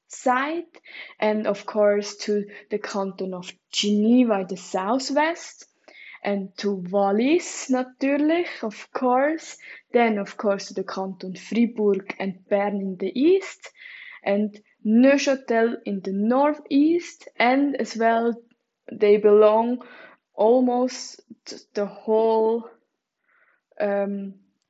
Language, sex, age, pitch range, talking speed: English, female, 20-39, 205-265 Hz, 110 wpm